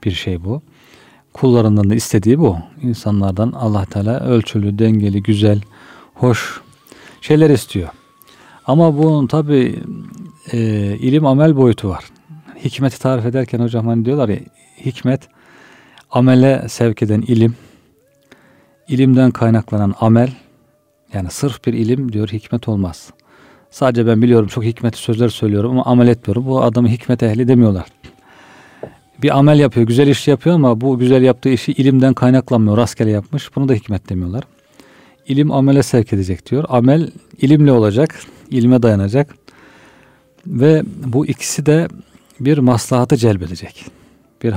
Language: Turkish